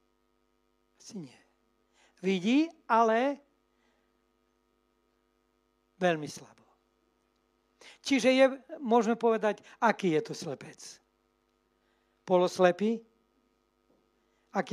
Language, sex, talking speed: Slovak, male, 60 wpm